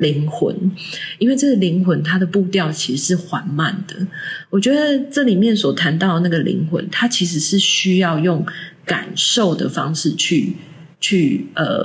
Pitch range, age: 165-195 Hz, 30-49